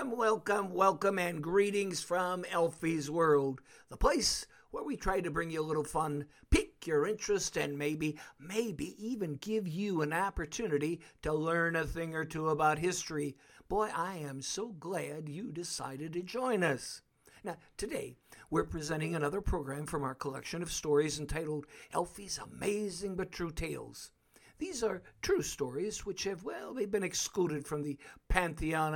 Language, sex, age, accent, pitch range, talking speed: English, male, 60-79, American, 150-205 Hz, 160 wpm